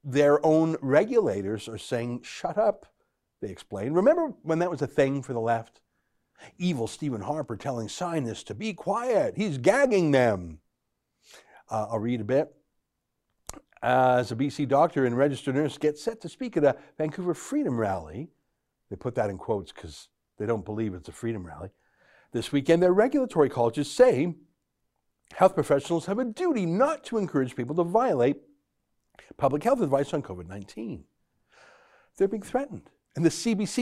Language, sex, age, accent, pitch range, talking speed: English, male, 60-79, American, 115-170 Hz, 160 wpm